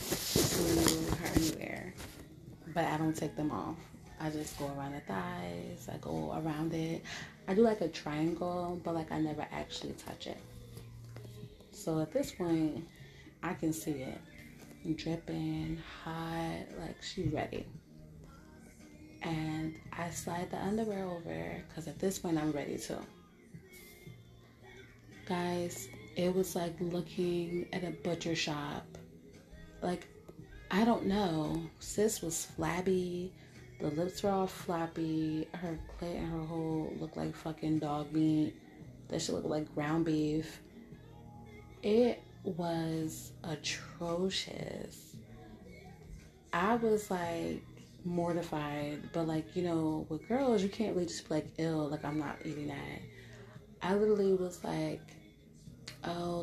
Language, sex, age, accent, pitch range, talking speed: English, female, 30-49, American, 150-175 Hz, 130 wpm